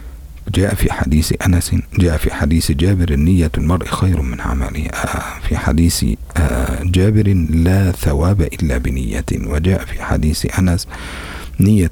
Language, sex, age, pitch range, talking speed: Indonesian, male, 50-69, 70-90 Hz, 125 wpm